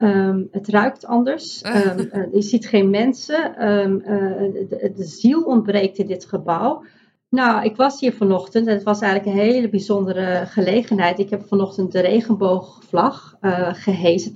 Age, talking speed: 40-59, 150 wpm